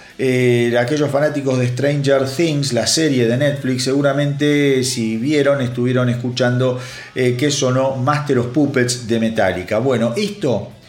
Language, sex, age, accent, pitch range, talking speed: Spanish, male, 40-59, Argentinian, 125-155 Hz, 140 wpm